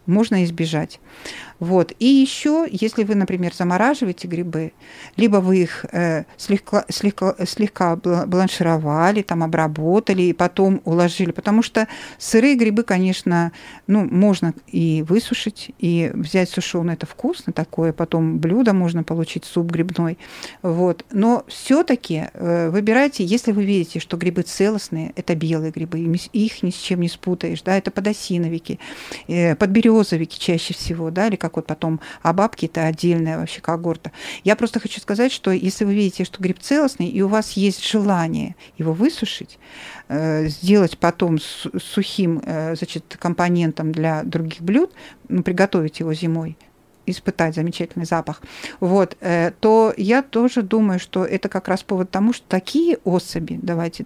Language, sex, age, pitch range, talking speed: Russian, female, 50-69, 170-210 Hz, 140 wpm